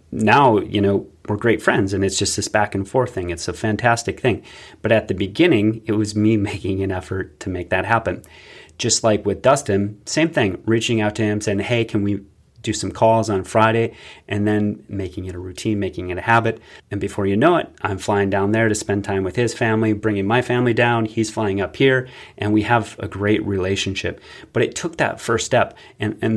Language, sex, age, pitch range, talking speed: English, male, 30-49, 100-115 Hz, 225 wpm